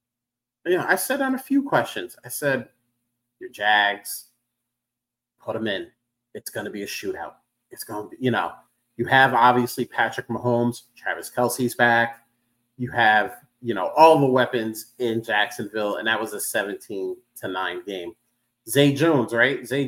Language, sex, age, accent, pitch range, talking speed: English, male, 30-49, American, 120-145 Hz, 165 wpm